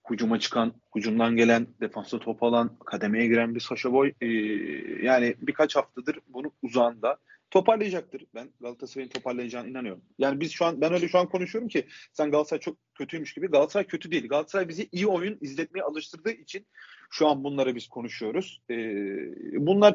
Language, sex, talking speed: Turkish, male, 160 wpm